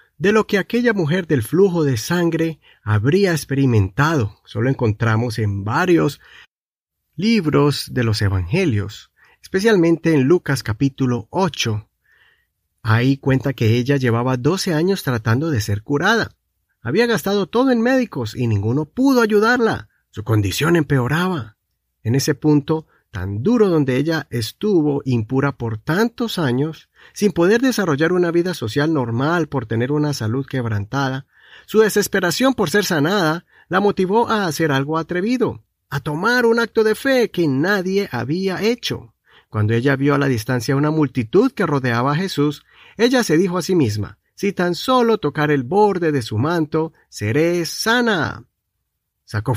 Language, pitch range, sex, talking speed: Spanish, 125-195 Hz, male, 150 wpm